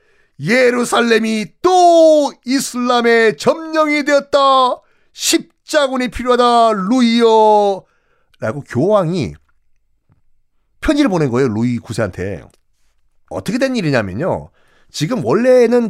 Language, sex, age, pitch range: Korean, male, 40-59, 155-245 Hz